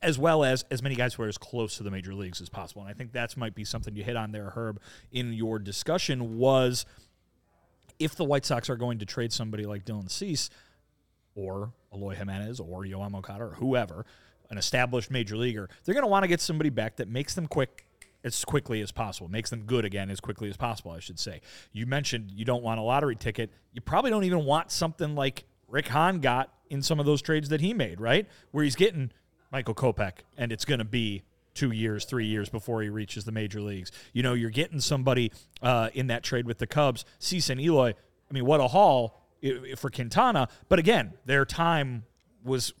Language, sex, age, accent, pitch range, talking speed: English, male, 30-49, American, 110-140 Hz, 220 wpm